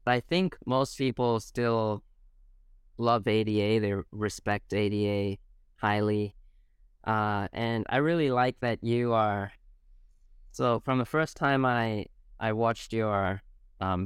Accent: American